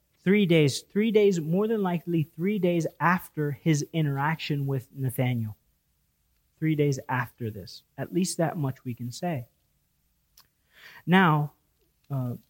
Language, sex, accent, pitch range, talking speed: English, male, American, 115-160 Hz, 130 wpm